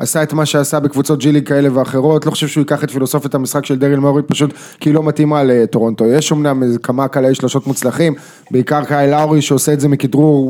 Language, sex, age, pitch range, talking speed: English, male, 20-39, 135-165 Hz, 155 wpm